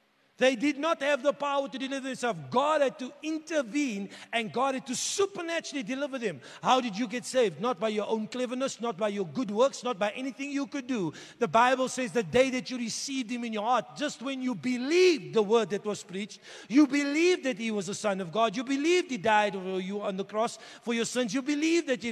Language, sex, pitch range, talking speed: English, male, 230-295 Hz, 235 wpm